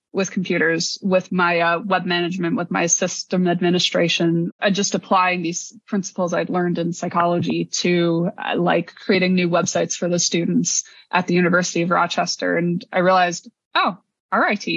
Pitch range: 175-225 Hz